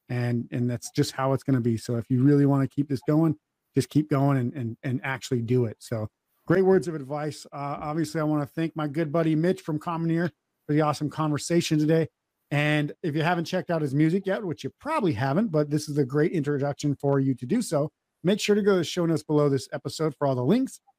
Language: English